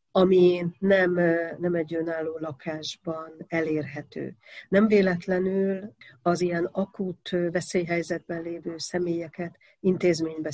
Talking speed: 90 wpm